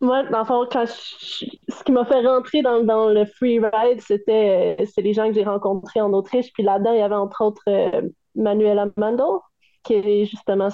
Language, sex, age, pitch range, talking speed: French, female, 20-39, 200-235 Hz, 190 wpm